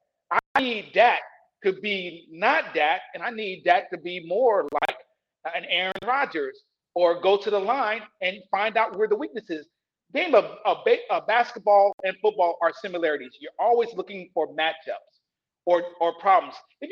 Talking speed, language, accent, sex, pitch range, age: 170 wpm, English, American, male, 185-310 Hz, 40-59